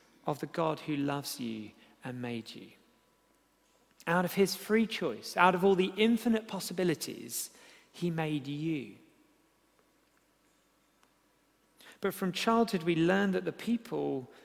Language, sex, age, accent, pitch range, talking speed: English, male, 40-59, British, 145-205 Hz, 130 wpm